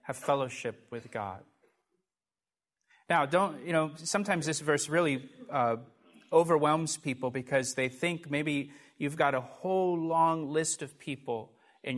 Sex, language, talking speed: male, English, 140 wpm